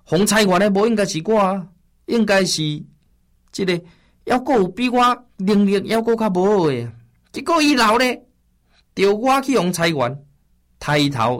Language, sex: Chinese, male